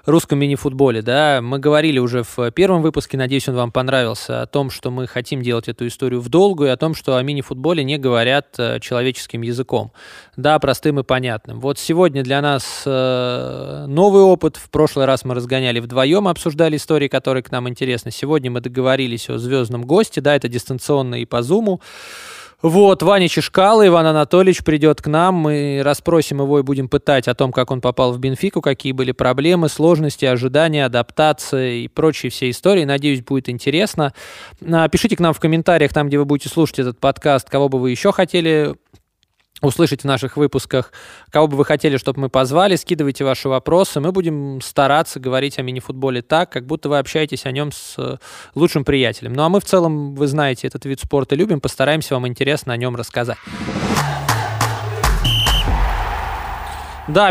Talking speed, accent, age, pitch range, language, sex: 175 wpm, native, 20-39, 130-160 Hz, Russian, male